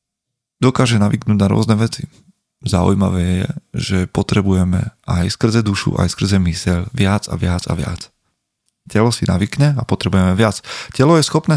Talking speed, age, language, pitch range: 150 wpm, 30-49, Slovak, 95-120 Hz